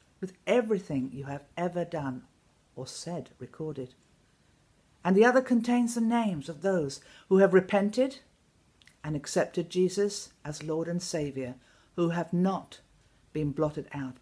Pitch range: 135-195 Hz